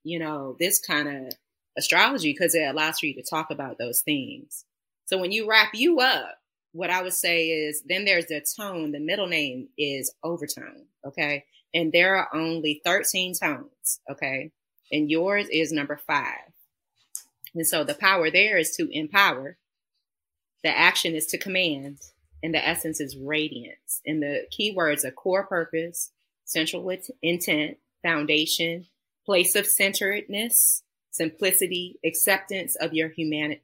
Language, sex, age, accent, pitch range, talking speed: English, female, 30-49, American, 150-185 Hz, 150 wpm